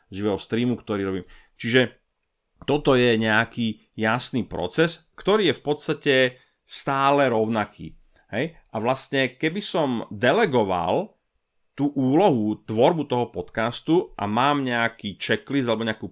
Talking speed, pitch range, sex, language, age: 125 wpm, 110-135 Hz, male, Slovak, 30-49